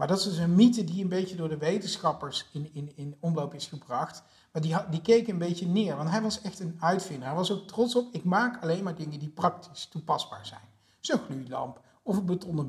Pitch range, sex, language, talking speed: 145-185 Hz, male, Dutch, 235 wpm